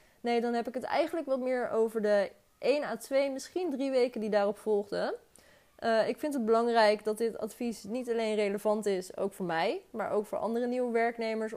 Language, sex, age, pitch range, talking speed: Dutch, female, 20-39, 210-250 Hz, 205 wpm